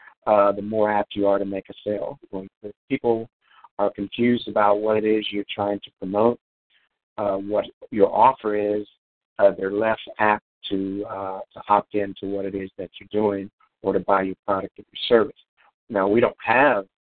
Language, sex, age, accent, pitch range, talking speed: English, male, 50-69, American, 95-110 Hz, 190 wpm